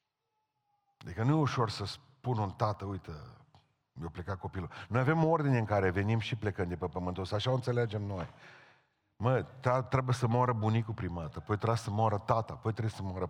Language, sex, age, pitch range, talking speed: Romanian, male, 40-59, 95-125 Hz, 200 wpm